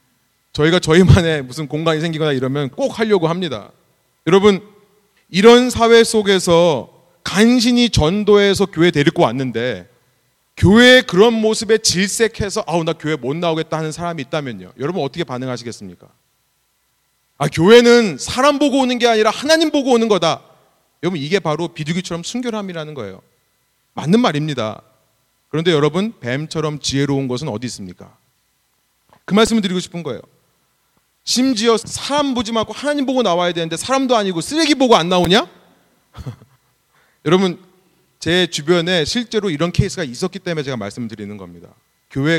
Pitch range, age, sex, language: 135-205 Hz, 30-49, male, Korean